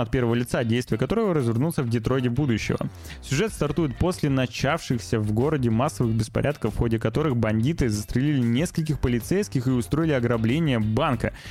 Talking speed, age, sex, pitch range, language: 145 wpm, 20-39, male, 120-165 Hz, Russian